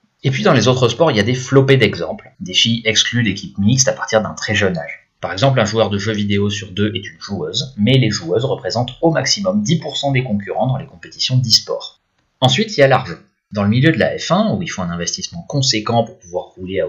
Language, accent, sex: French, French, male